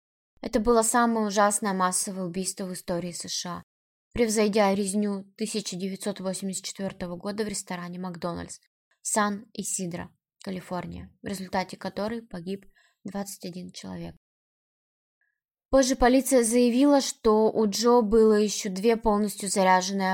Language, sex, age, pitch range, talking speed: Russian, female, 20-39, 190-235 Hz, 105 wpm